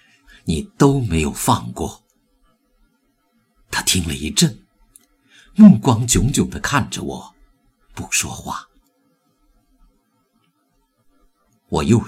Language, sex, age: Chinese, male, 50-69